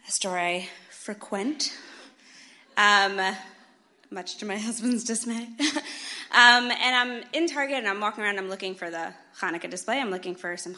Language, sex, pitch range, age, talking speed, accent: English, female, 185-260 Hz, 20-39, 160 wpm, American